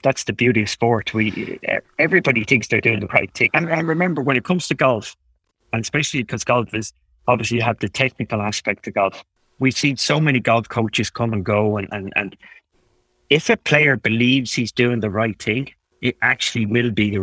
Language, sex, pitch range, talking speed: English, male, 105-130 Hz, 205 wpm